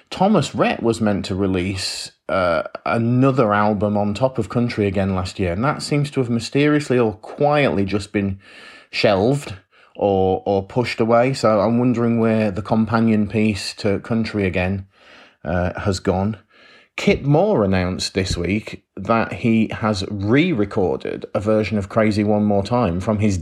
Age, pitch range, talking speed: 30-49, 100-120 Hz, 160 wpm